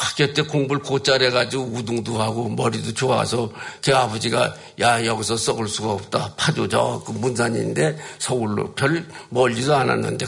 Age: 50-69